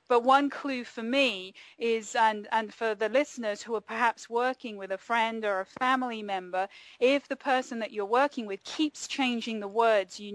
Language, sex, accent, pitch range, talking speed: English, female, British, 215-270 Hz, 195 wpm